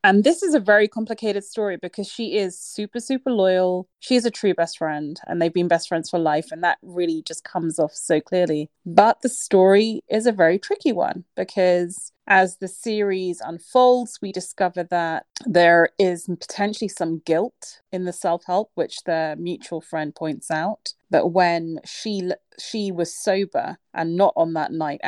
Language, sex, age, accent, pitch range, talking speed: English, female, 30-49, British, 160-195 Hz, 180 wpm